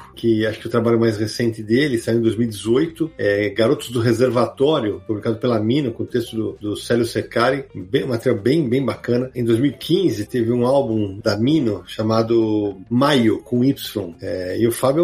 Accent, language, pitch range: Brazilian, Portuguese, 110-130 Hz